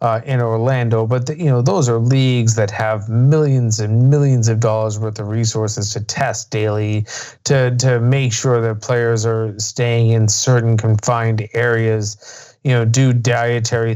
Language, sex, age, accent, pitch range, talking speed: English, male, 30-49, American, 110-120 Hz, 170 wpm